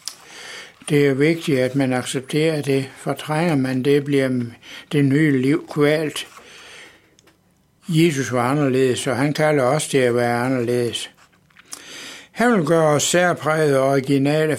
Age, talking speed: 60-79, 135 wpm